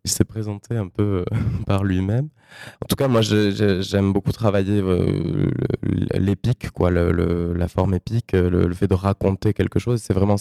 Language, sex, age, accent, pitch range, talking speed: French, male, 20-39, French, 95-115 Hz, 200 wpm